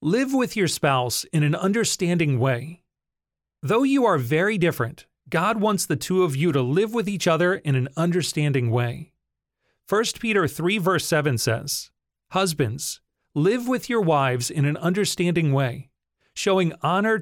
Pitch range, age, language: 135-185 Hz, 30-49, English